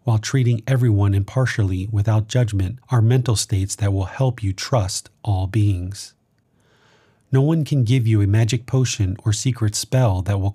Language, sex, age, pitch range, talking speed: English, male, 30-49, 105-130 Hz, 165 wpm